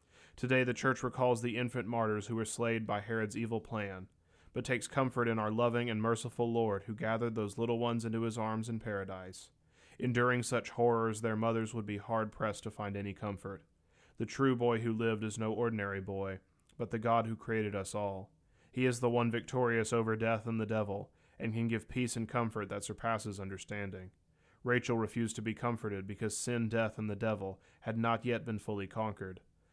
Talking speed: 195 wpm